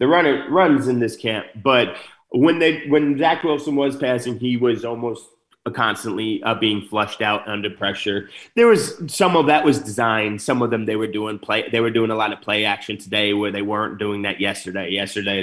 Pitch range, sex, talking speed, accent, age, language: 105-130 Hz, male, 210 wpm, American, 30-49, English